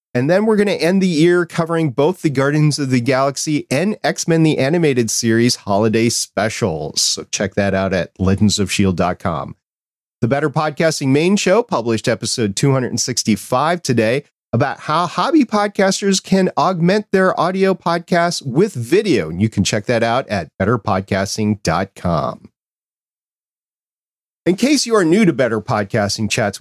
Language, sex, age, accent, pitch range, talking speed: English, male, 40-59, American, 110-160 Hz, 145 wpm